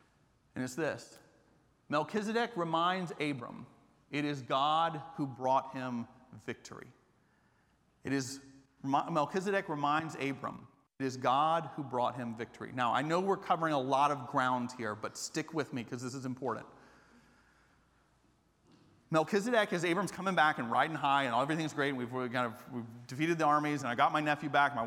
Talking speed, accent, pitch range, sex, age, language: 170 wpm, American, 125-160 Hz, male, 40-59, English